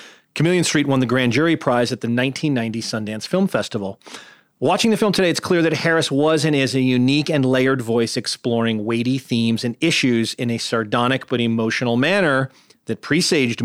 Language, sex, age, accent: English, male, 40-59, American